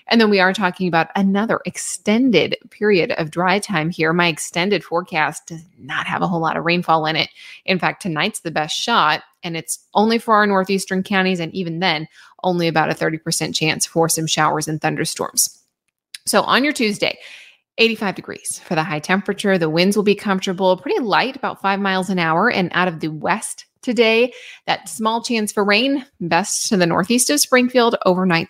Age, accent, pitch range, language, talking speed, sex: 20-39, American, 175-220 Hz, English, 195 wpm, female